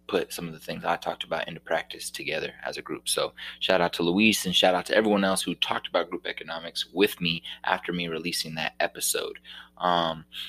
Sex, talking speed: male, 215 wpm